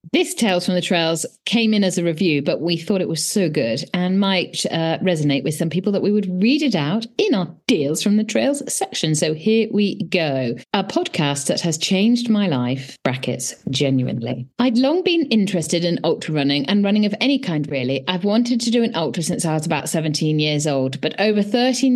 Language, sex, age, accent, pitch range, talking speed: English, female, 40-59, British, 150-215 Hz, 215 wpm